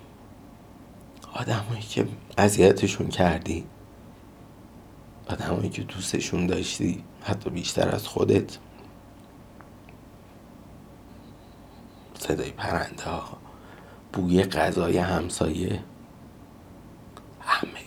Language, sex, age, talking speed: Persian, male, 50-69, 65 wpm